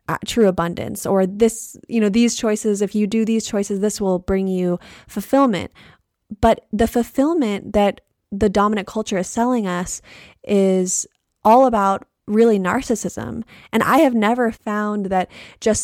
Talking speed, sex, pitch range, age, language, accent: 150 wpm, female, 190-220 Hz, 20-39, English, American